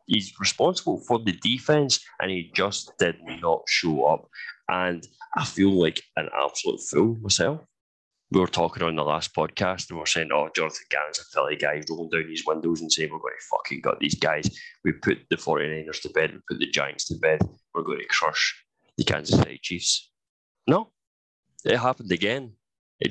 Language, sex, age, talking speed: English, male, 20-39, 195 wpm